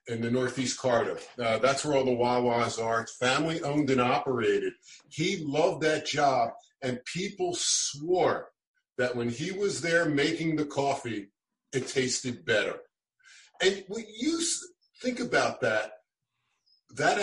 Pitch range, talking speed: 125-190 Hz, 145 wpm